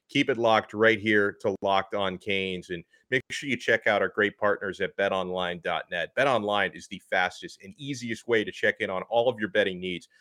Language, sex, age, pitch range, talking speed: English, male, 30-49, 110-140 Hz, 210 wpm